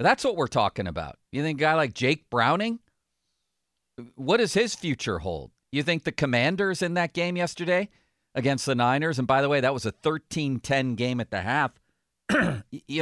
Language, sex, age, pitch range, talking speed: English, male, 50-69, 100-135 Hz, 190 wpm